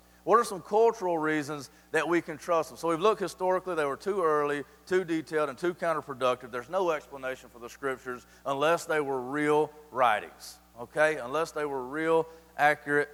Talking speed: 185 wpm